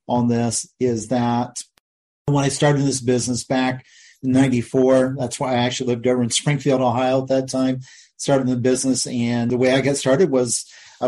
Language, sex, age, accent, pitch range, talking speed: English, male, 40-59, American, 125-140 Hz, 190 wpm